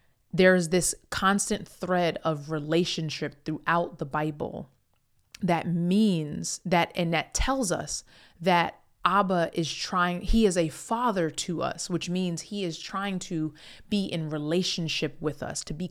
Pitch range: 160-185 Hz